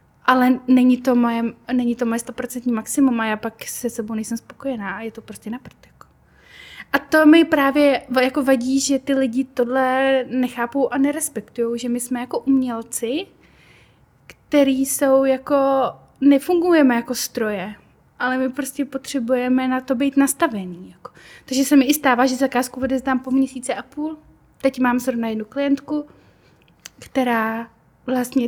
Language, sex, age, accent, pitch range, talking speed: Czech, female, 20-39, native, 235-275 Hz, 150 wpm